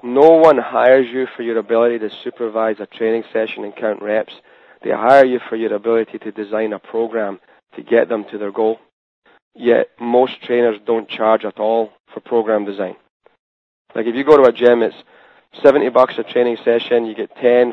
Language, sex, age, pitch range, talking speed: English, male, 30-49, 110-120 Hz, 195 wpm